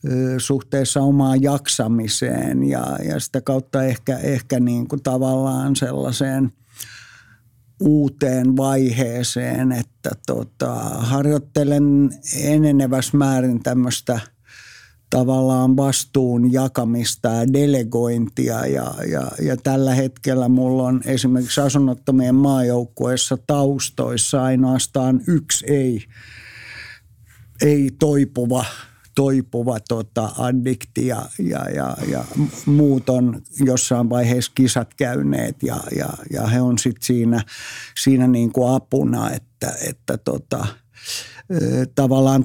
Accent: native